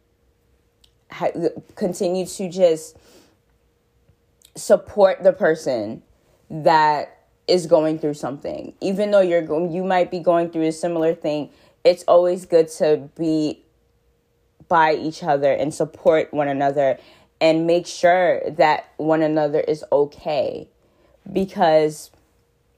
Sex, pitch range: female, 155-175 Hz